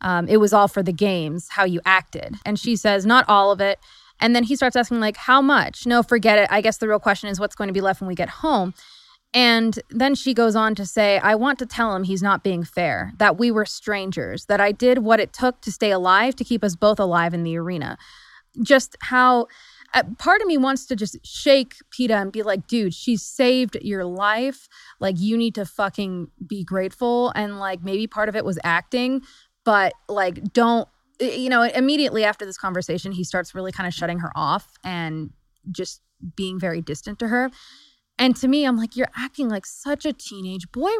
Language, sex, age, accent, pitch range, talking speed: English, female, 20-39, American, 190-250 Hz, 220 wpm